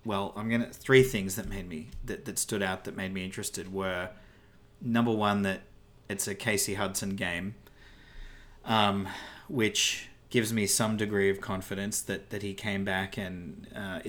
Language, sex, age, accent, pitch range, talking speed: English, male, 30-49, Australian, 100-115 Hz, 170 wpm